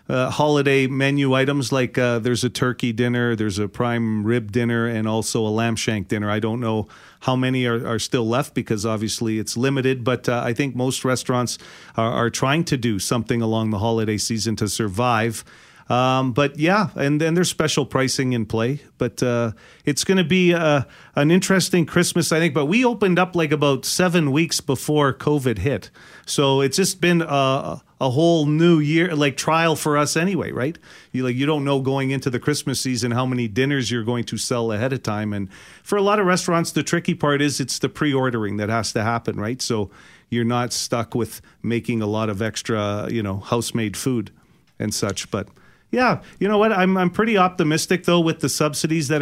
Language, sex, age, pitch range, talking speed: English, male, 40-59, 120-155 Hz, 205 wpm